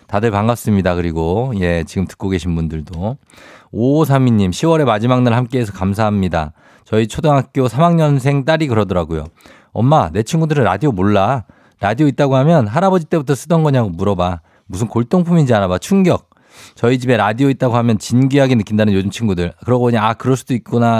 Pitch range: 95-130 Hz